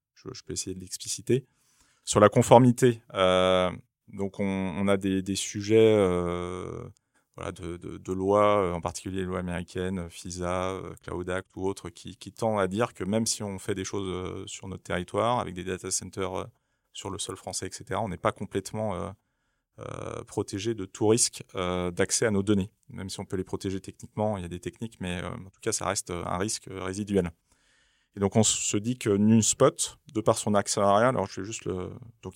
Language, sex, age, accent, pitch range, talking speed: French, male, 30-49, French, 95-110 Hz, 205 wpm